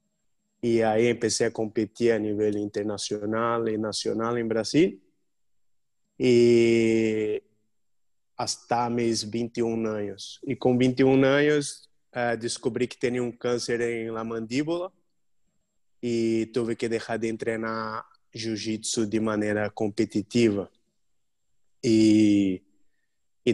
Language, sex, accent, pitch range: English, male, Brazilian, 110-120 Hz